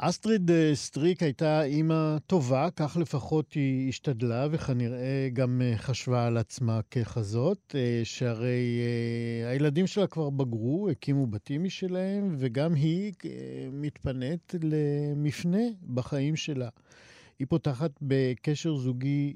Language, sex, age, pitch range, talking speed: Hebrew, male, 50-69, 120-155 Hz, 100 wpm